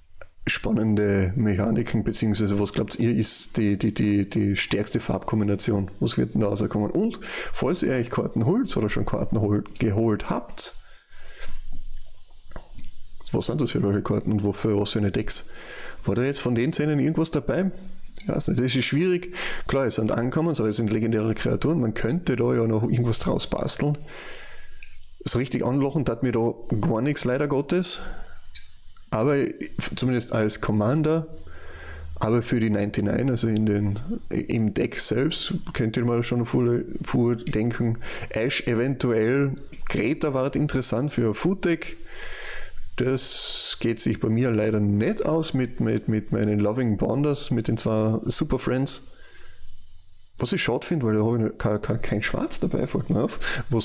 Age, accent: 20-39, German